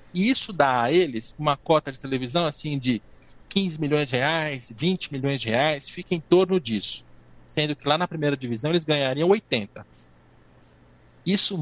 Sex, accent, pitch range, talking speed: male, Brazilian, 135-185 Hz, 170 wpm